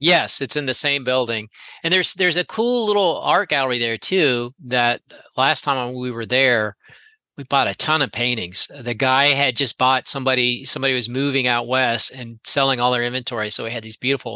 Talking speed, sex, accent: 210 wpm, male, American